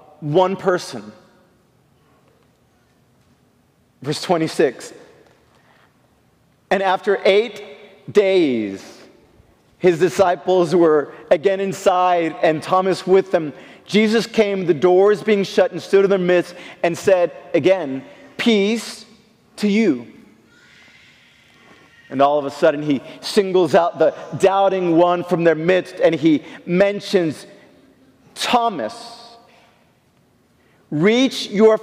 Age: 40-59